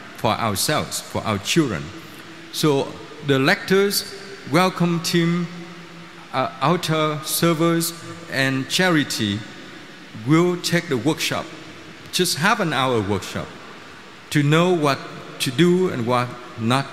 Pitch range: 125-170 Hz